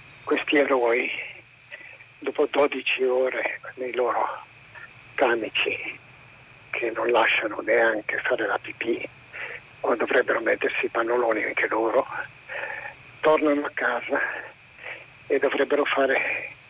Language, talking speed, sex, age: Italian, 100 wpm, male, 50-69